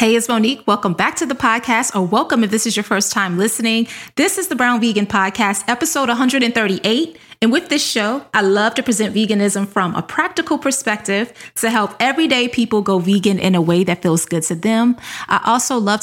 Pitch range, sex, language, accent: 195-230 Hz, female, English, American